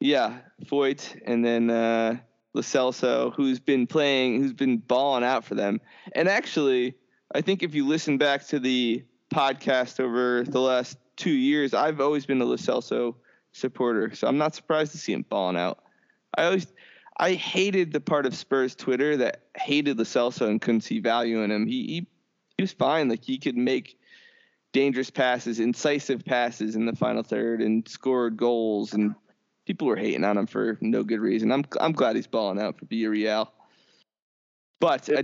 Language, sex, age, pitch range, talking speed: English, male, 20-39, 115-150 Hz, 180 wpm